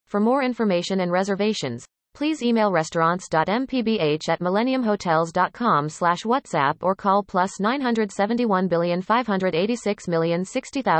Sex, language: female, English